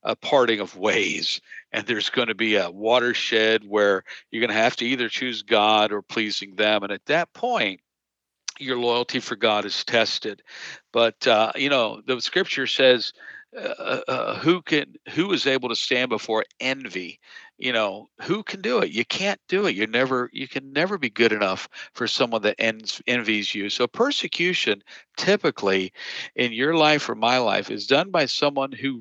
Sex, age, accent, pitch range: male, 50-69, American, 110-145 Hz